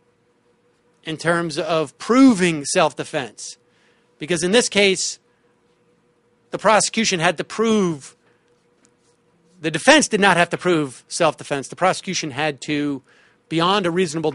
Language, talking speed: English, 130 wpm